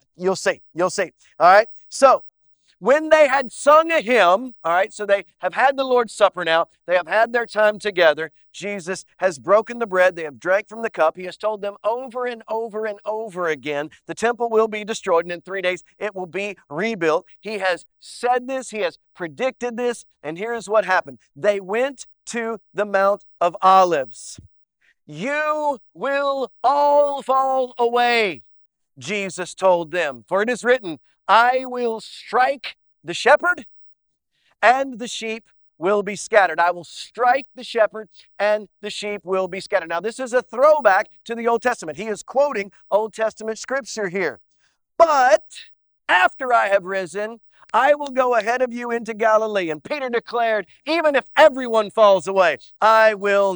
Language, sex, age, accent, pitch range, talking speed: English, male, 40-59, American, 185-245 Hz, 175 wpm